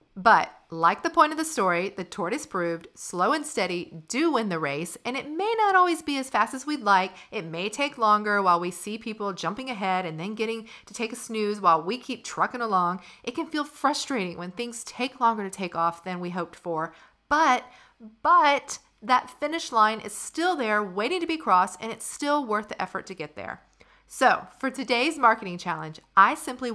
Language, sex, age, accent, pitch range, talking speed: English, female, 40-59, American, 185-280 Hz, 210 wpm